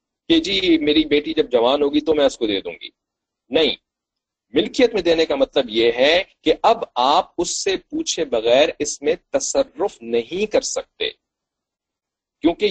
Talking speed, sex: 135 wpm, male